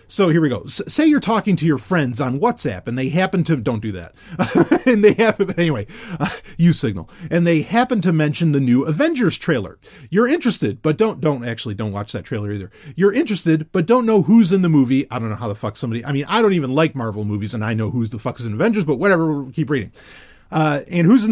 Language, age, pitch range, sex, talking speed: English, 30-49, 135-220 Hz, male, 240 wpm